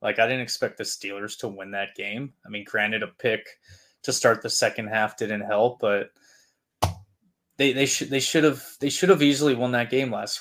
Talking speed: 215 wpm